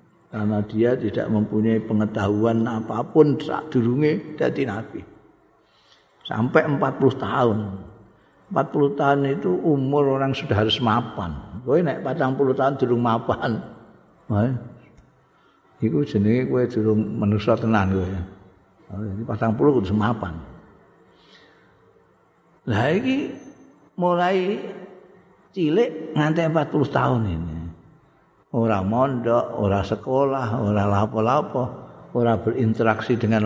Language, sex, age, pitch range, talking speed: Indonesian, male, 50-69, 110-140 Hz, 100 wpm